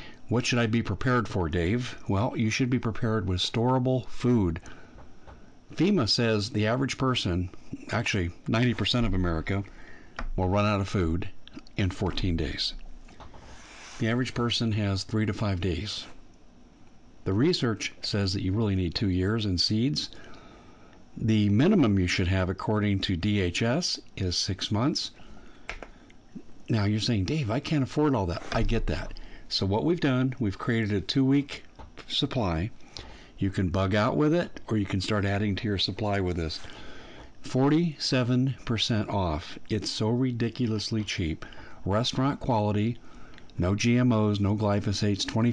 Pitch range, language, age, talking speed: 95-120 Hz, English, 50-69, 145 wpm